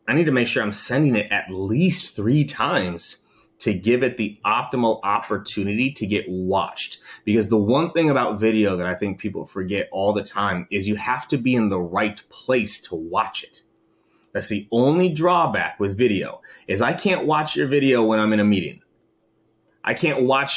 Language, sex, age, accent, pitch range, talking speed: English, male, 30-49, American, 100-130 Hz, 195 wpm